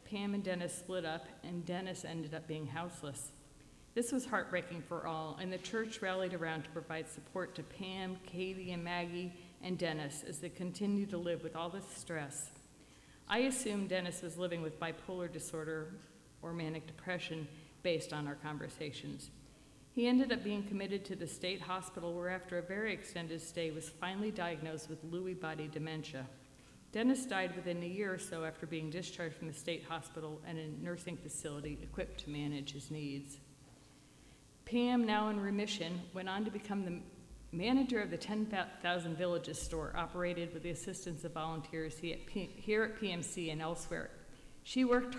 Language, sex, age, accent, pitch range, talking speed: English, female, 50-69, American, 160-185 Hz, 170 wpm